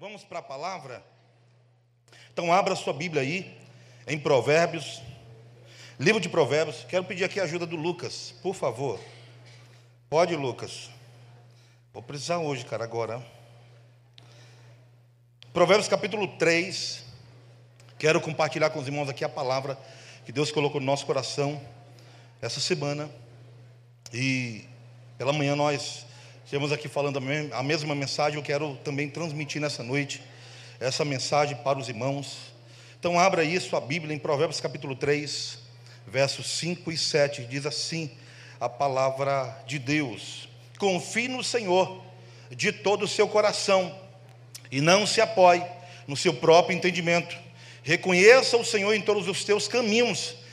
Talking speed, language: 135 wpm, Portuguese